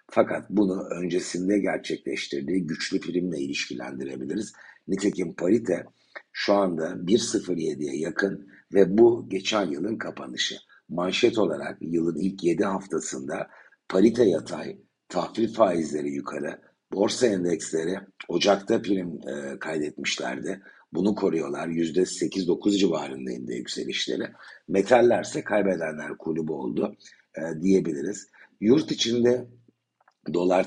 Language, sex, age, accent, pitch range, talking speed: Turkish, male, 60-79, native, 80-100 Hz, 90 wpm